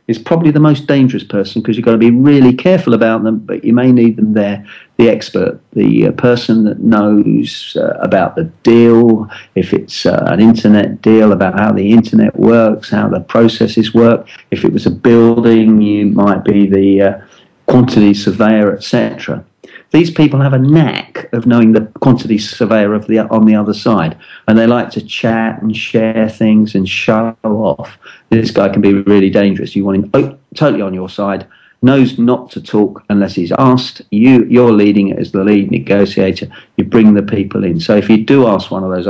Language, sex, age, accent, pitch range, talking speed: English, male, 50-69, British, 100-115 Hz, 195 wpm